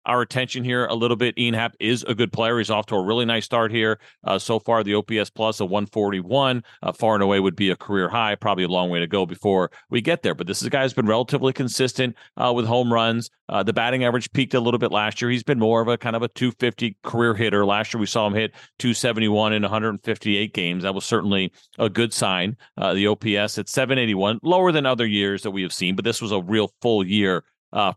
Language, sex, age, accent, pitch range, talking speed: English, male, 40-59, American, 100-125 Hz, 255 wpm